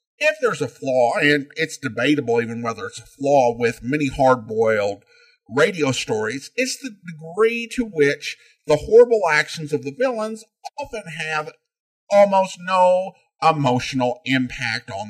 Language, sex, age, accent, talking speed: English, male, 50-69, American, 140 wpm